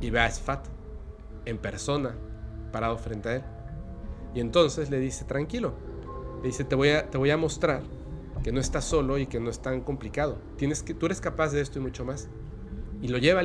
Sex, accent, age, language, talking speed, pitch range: male, Mexican, 40-59, Spanish, 210 wpm, 110-145 Hz